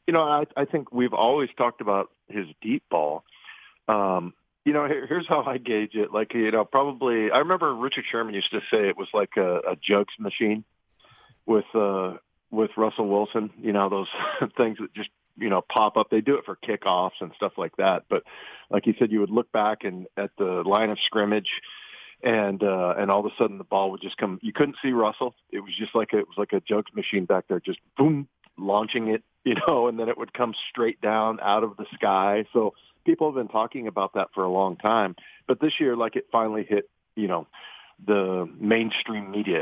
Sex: male